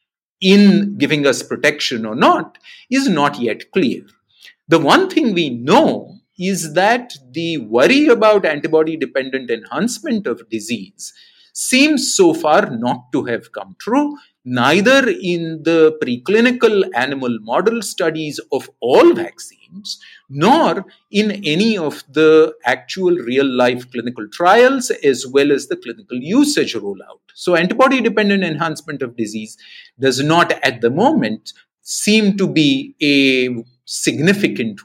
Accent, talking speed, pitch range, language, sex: Indian, 125 wpm, 140-235 Hz, English, male